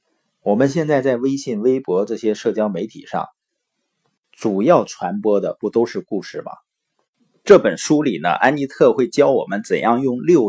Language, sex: Chinese, male